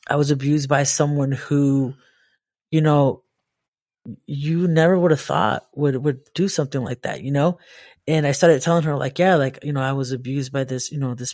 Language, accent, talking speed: English, American, 205 wpm